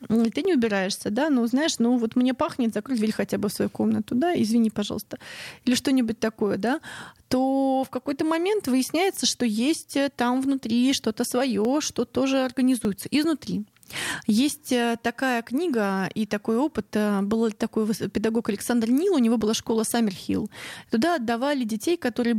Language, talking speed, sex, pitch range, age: Russian, 160 wpm, female, 210-260 Hz, 20-39